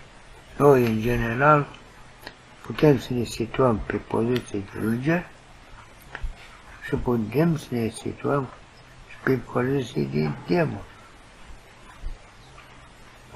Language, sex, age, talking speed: Romanian, male, 60-79, 105 wpm